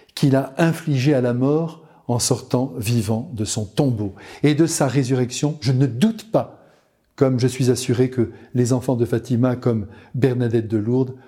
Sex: male